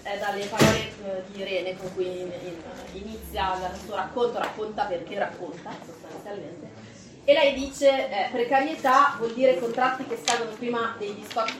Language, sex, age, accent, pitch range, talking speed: Italian, female, 30-49, native, 190-230 Hz, 160 wpm